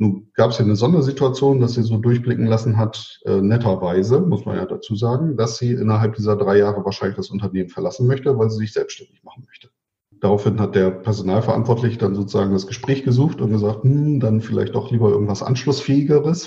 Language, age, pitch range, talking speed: German, 40-59, 105-130 Hz, 195 wpm